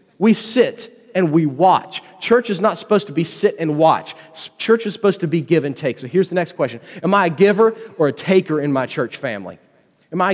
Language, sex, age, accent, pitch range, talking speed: English, male, 30-49, American, 155-205 Hz, 230 wpm